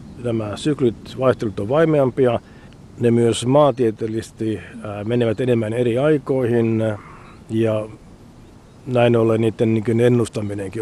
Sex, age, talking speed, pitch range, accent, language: male, 50-69, 95 wpm, 110-130 Hz, native, Finnish